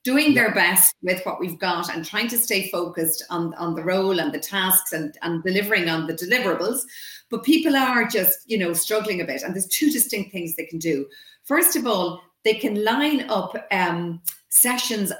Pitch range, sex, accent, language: 180-225 Hz, female, Irish, English